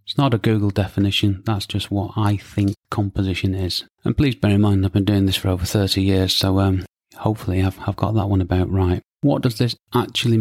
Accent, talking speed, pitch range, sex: British, 225 wpm, 95-110 Hz, male